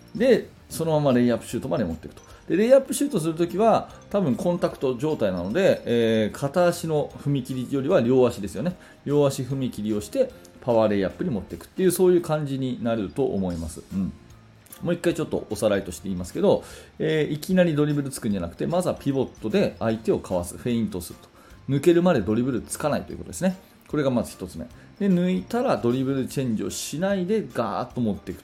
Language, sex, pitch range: Japanese, male, 110-170 Hz